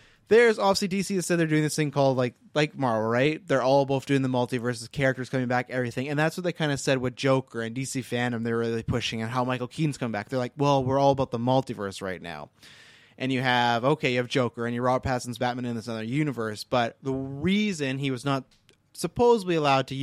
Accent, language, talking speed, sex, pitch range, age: American, English, 240 wpm, male, 125-150 Hz, 20-39